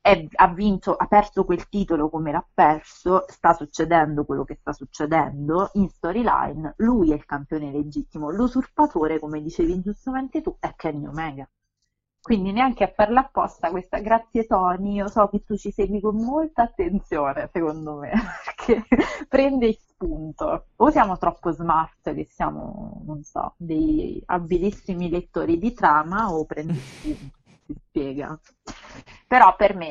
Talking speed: 150 wpm